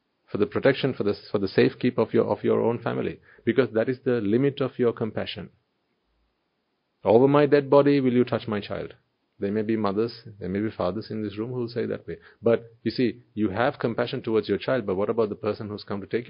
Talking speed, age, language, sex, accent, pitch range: 240 wpm, 40-59, English, male, Indian, 115-155 Hz